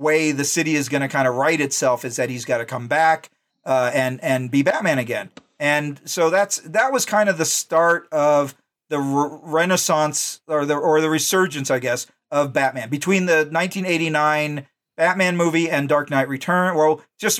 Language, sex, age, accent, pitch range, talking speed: English, male, 40-59, American, 145-180 Hz, 195 wpm